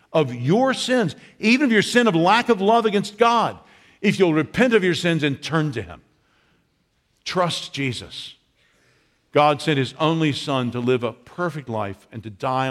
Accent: American